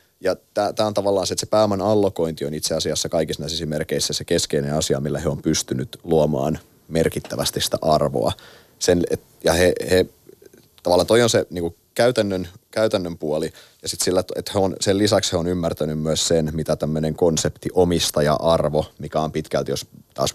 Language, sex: Finnish, male